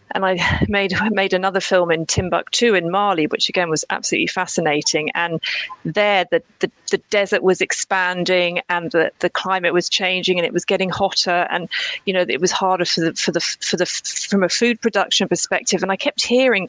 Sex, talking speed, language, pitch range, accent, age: female, 200 wpm, English, 170-205 Hz, British, 40-59